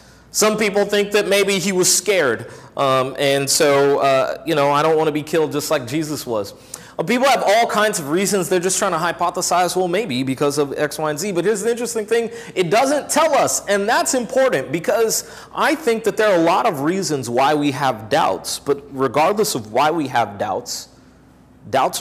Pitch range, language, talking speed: 125-180 Hz, English, 210 wpm